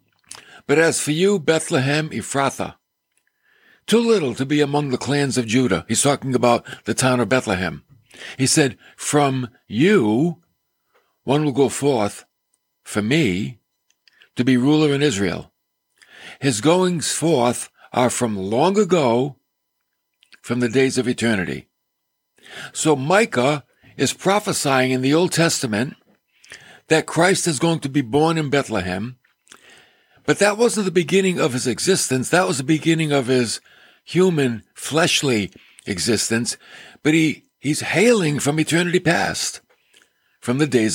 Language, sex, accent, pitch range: English, male, American, 120-160 Hz